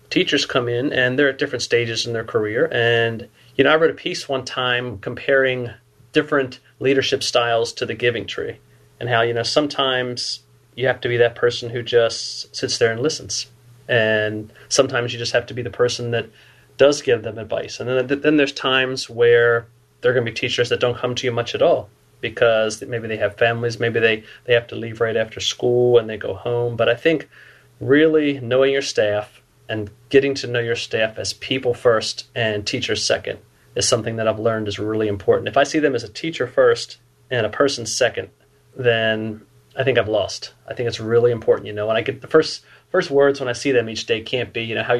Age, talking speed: 30-49, 220 wpm